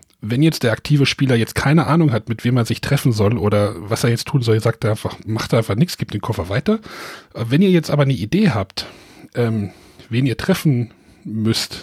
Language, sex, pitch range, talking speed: German, male, 120-160 Hz, 220 wpm